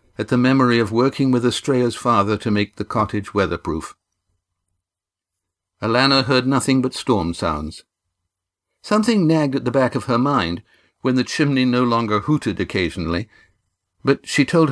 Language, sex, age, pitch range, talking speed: English, male, 60-79, 90-125 Hz, 150 wpm